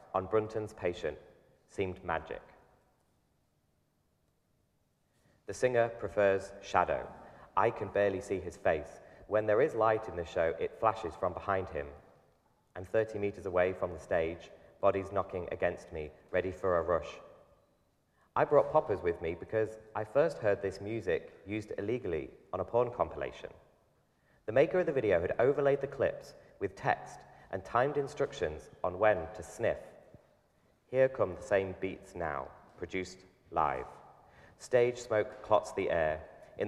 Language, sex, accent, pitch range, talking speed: English, male, British, 90-110 Hz, 150 wpm